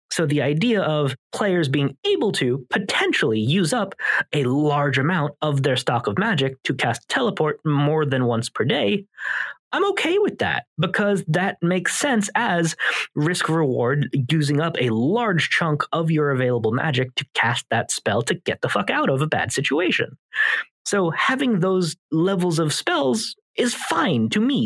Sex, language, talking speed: male, English, 170 wpm